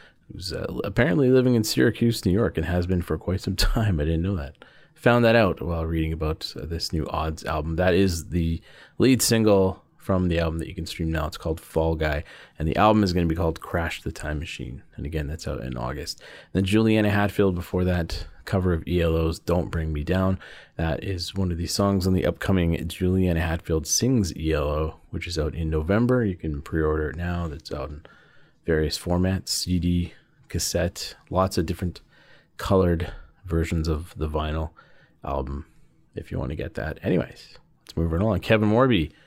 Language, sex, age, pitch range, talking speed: English, male, 30-49, 80-100 Hz, 200 wpm